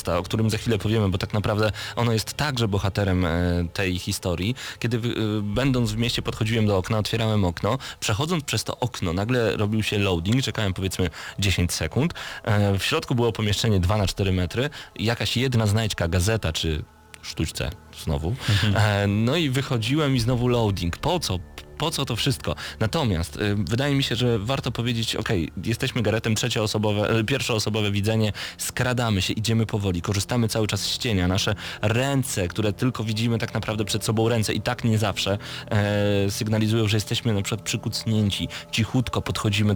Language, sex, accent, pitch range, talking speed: Polish, male, native, 100-115 Hz, 160 wpm